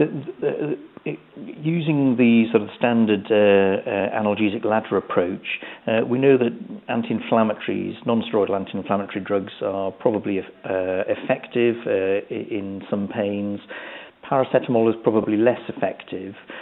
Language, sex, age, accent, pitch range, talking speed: English, male, 50-69, British, 95-115 Hz, 110 wpm